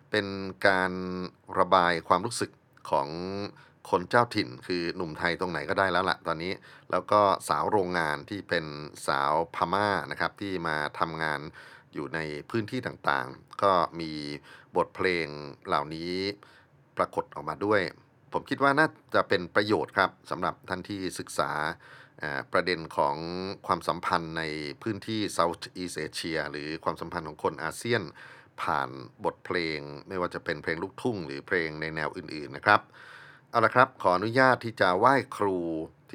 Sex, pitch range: male, 80-100 Hz